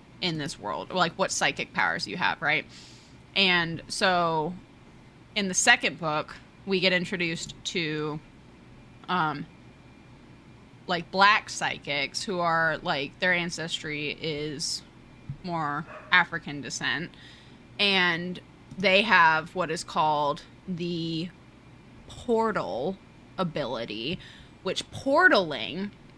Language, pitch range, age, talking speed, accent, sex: English, 160-200 Hz, 20-39, 105 wpm, American, female